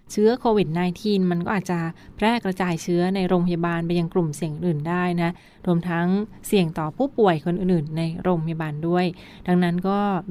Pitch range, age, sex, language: 175-200 Hz, 20-39, female, Thai